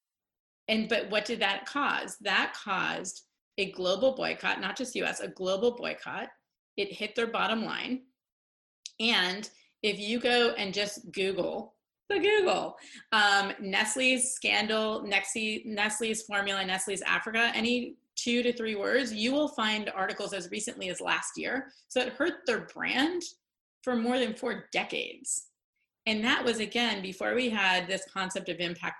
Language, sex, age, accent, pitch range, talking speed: English, female, 30-49, American, 200-245 Hz, 150 wpm